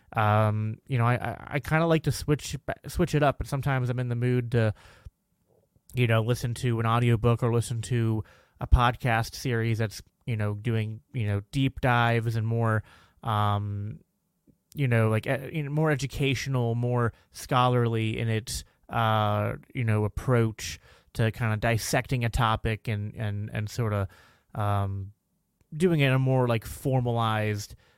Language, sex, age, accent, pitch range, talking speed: English, male, 30-49, American, 110-130 Hz, 165 wpm